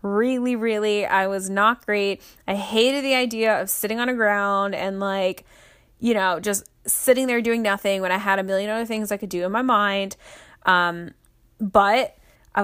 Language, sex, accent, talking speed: English, female, American, 190 wpm